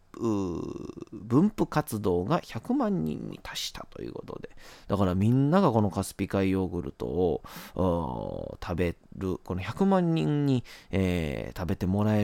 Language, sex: Japanese, male